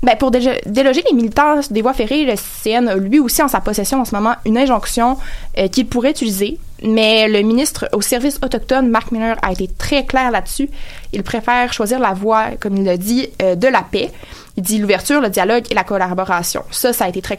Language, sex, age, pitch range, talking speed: French, female, 20-39, 200-245 Hz, 225 wpm